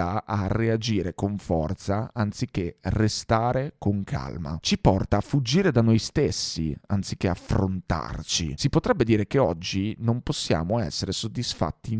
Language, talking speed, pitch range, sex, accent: Italian, 130 wpm, 95-120 Hz, male, native